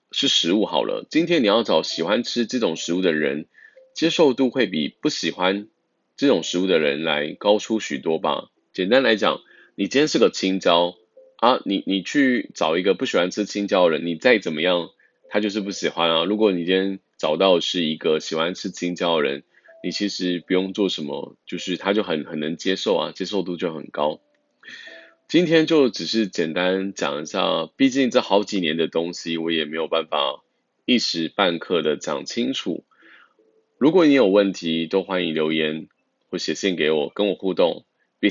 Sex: male